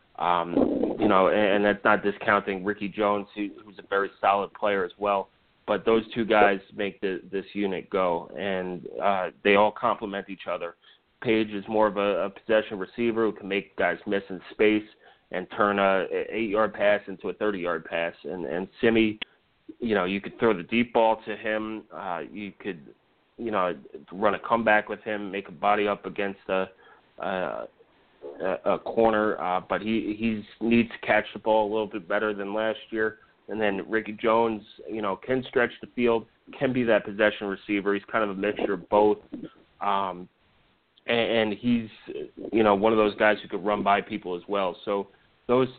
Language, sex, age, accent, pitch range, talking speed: English, male, 30-49, American, 100-115 Hz, 195 wpm